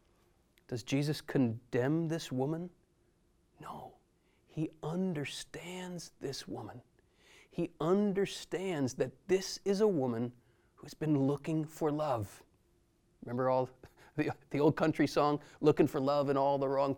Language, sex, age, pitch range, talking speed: English, male, 30-49, 140-195 Hz, 130 wpm